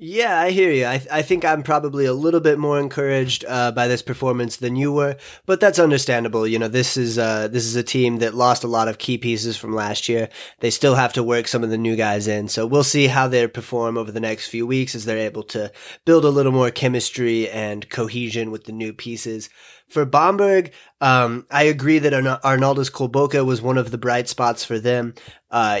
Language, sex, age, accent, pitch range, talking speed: English, male, 30-49, American, 115-130 Hz, 230 wpm